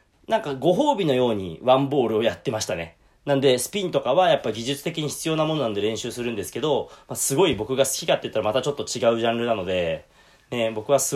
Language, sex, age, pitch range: Japanese, male, 30-49, 110-150 Hz